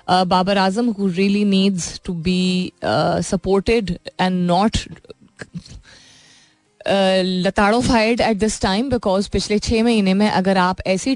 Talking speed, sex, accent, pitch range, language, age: 150 wpm, female, native, 180-215 Hz, Hindi, 20-39